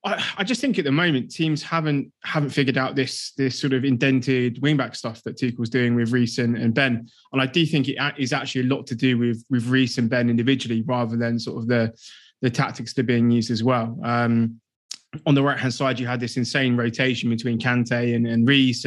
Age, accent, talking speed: 20-39, British, 230 wpm